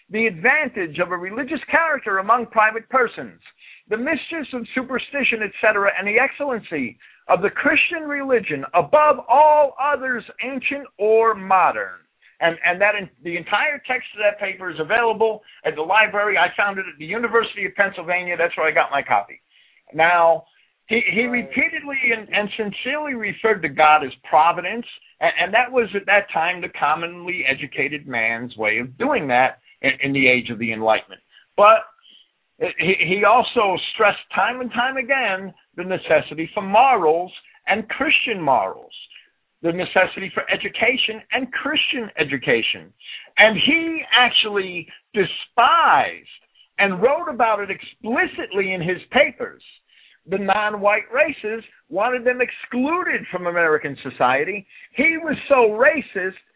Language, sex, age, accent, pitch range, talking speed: English, male, 50-69, American, 180-260 Hz, 145 wpm